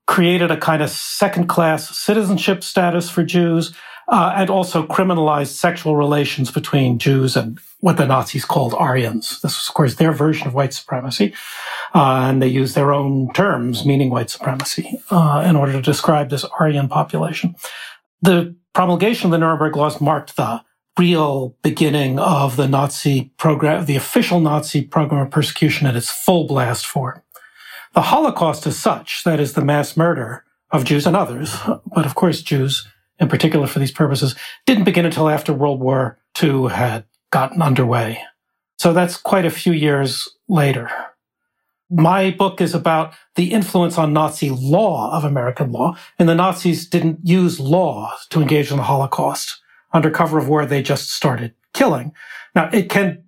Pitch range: 140-175 Hz